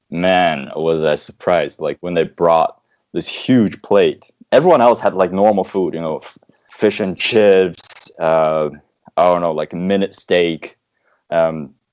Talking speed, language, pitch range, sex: 165 wpm, English, 85-105 Hz, male